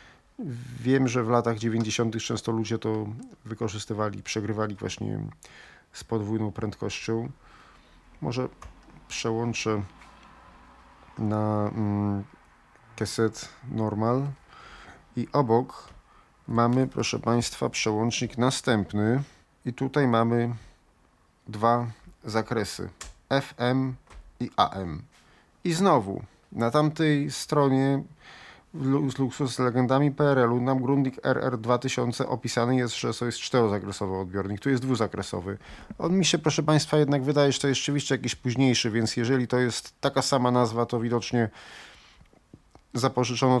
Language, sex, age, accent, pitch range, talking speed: Polish, male, 40-59, native, 110-130 Hz, 115 wpm